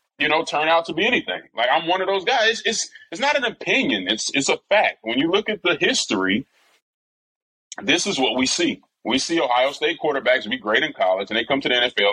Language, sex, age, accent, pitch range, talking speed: English, male, 30-49, American, 105-135 Hz, 240 wpm